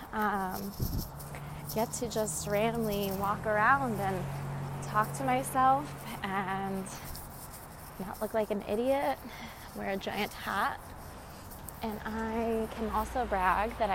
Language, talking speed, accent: English, 115 wpm, American